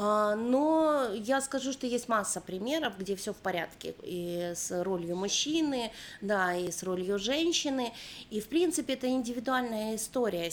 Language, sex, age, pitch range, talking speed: Russian, female, 30-49, 180-240 Hz, 150 wpm